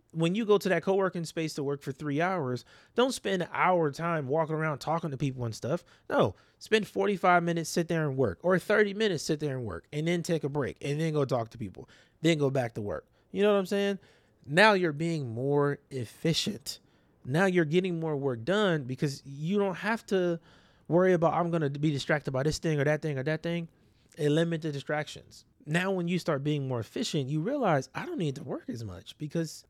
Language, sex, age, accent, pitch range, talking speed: English, male, 30-49, American, 130-175 Hz, 225 wpm